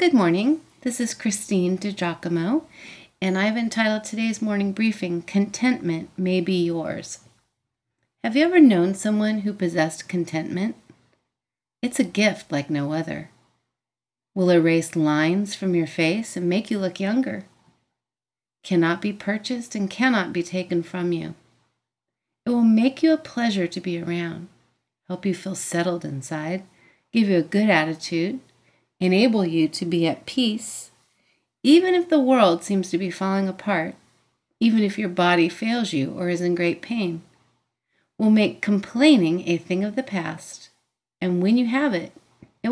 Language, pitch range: English, 170-225 Hz